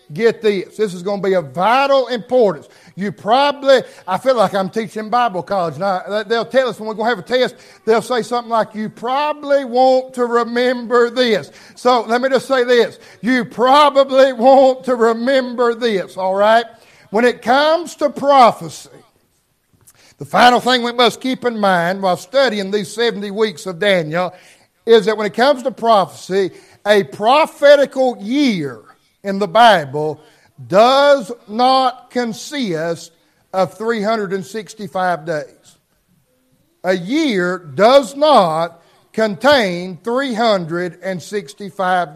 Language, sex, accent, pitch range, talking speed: English, male, American, 185-250 Hz, 140 wpm